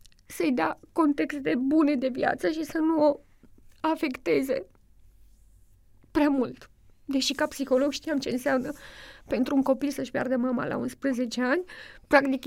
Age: 20-39